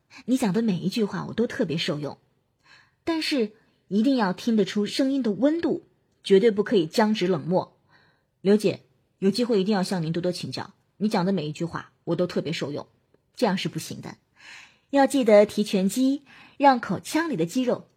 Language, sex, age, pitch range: Chinese, female, 20-39, 170-245 Hz